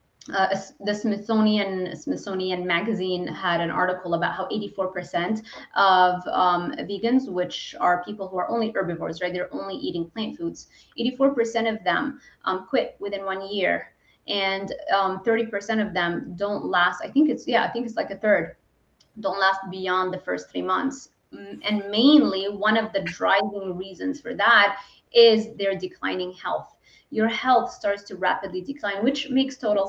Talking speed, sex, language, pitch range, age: 165 wpm, female, English, 195-255 Hz, 20-39